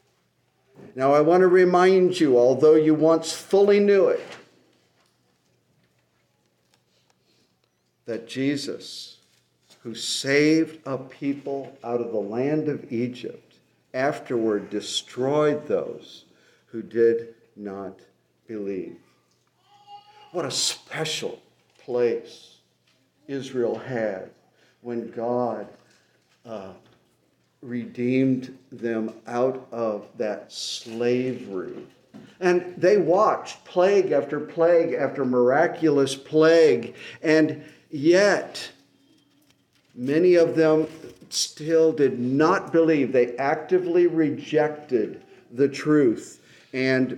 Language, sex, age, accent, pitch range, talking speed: English, male, 50-69, American, 115-155 Hz, 90 wpm